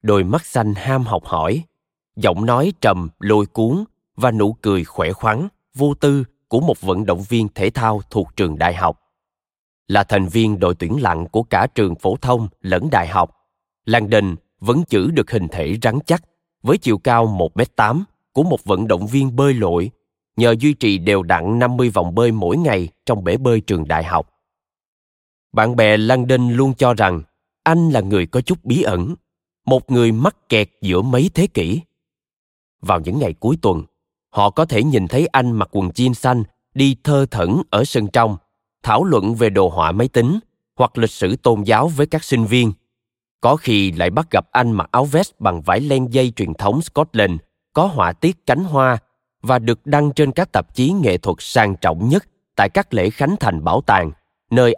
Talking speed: 195 wpm